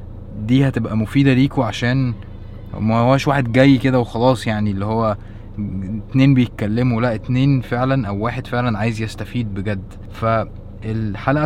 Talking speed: 130 wpm